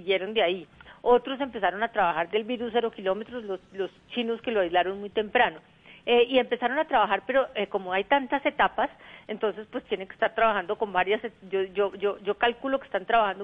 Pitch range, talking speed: 190-235 Hz, 205 wpm